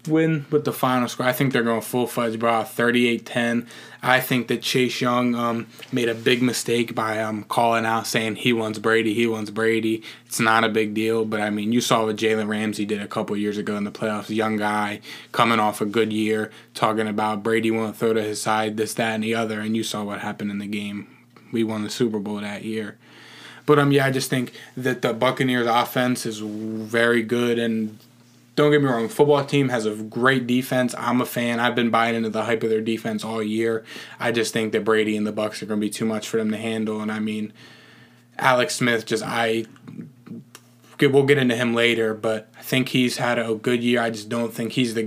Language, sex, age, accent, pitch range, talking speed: English, male, 20-39, American, 110-120 Hz, 230 wpm